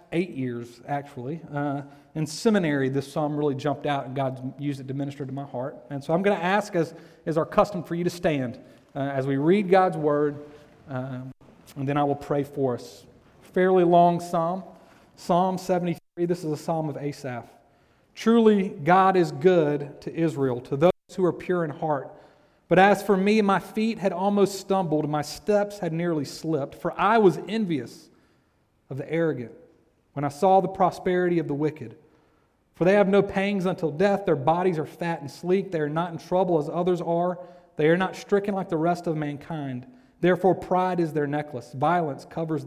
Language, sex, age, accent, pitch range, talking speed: English, male, 40-59, American, 145-185 Hz, 195 wpm